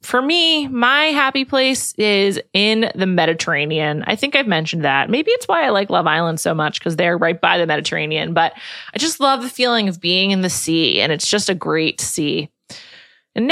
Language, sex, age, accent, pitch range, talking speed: English, female, 20-39, American, 170-260 Hz, 210 wpm